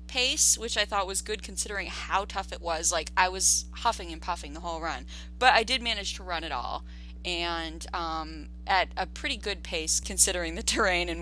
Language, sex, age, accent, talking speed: English, female, 20-39, American, 210 wpm